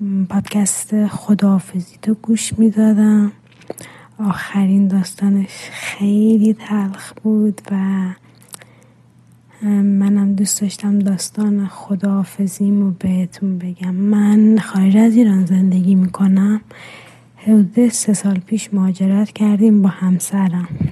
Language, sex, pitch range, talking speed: Persian, female, 190-210 Hz, 100 wpm